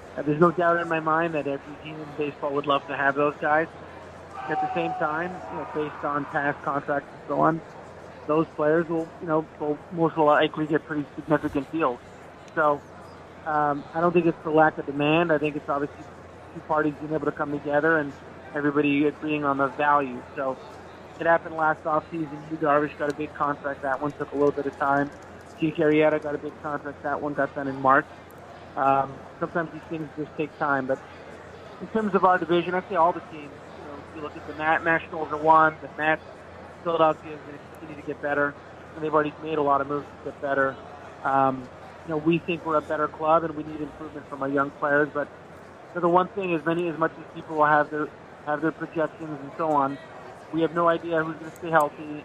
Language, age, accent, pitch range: English, 30-49, American, 145-160 Hz